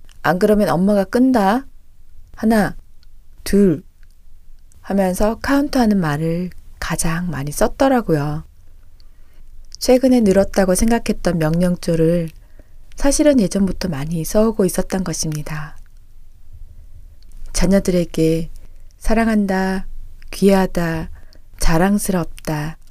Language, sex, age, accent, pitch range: Korean, female, 20-39, native, 155-210 Hz